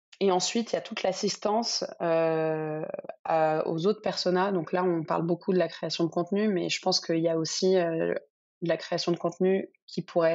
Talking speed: 215 wpm